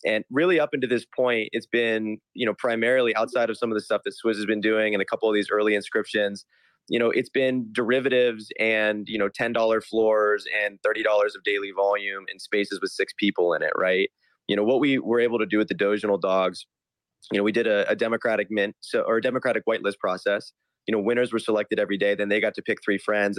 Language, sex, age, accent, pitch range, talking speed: English, male, 20-39, American, 105-125 Hz, 240 wpm